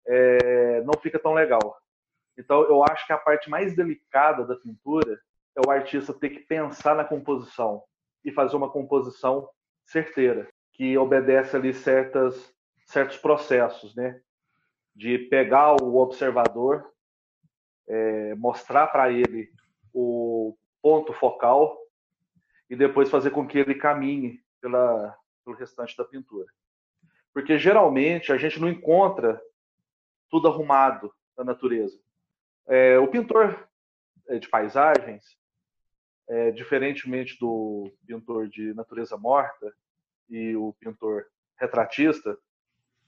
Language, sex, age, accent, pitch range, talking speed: Portuguese, male, 40-59, Brazilian, 120-155 Hz, 115 wpm